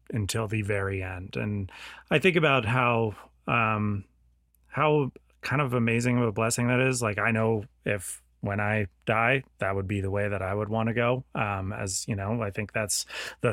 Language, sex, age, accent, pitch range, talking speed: English, male, 30-49, American, 100-120 Hz, 200 wpm